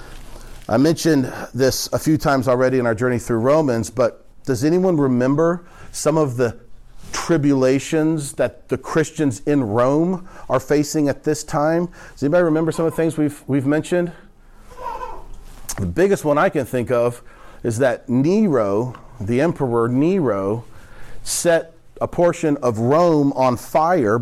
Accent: American